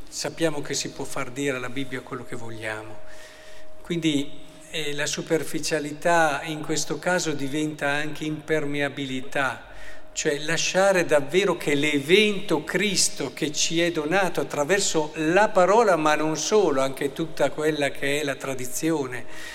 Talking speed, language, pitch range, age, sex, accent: 135 wpm, Italian, 150-190 Hz, 50-69, male, native